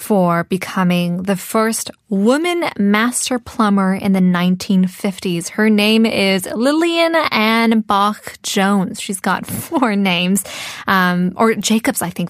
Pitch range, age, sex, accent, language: 195-240 Hz, 10-29, female, American, Korean